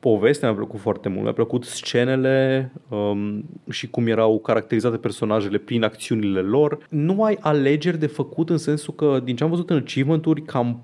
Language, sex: Romanian, male